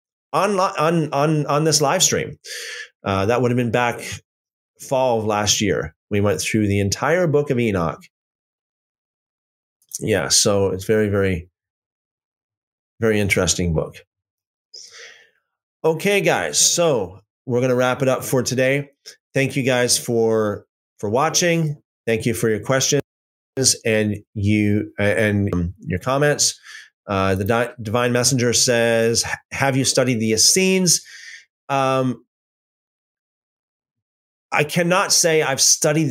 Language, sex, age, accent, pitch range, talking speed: English, male, 30-49, American, 105-140 Hz, 125 wpm